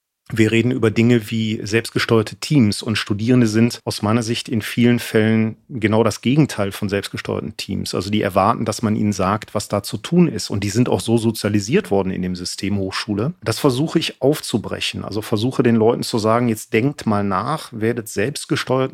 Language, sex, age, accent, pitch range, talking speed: German, male, 40-59, German, 105-125 Hz, 195 wpm